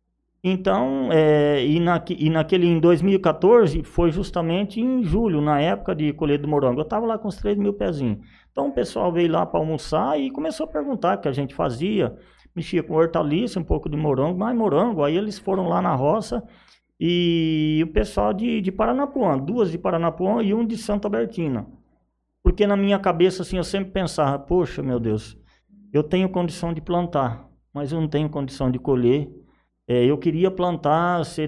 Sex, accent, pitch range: male, Brazilian, 150-200 Hz